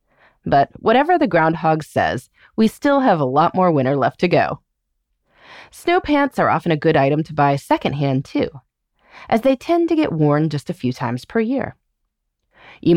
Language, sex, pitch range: English, female, 150-245 Hz